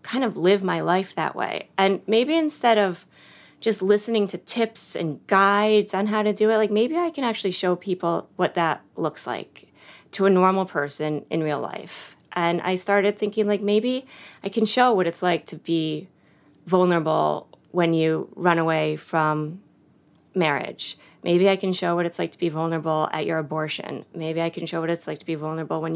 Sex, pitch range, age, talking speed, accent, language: female, 160-205 Hz, 30-49, 195 wpm, American, English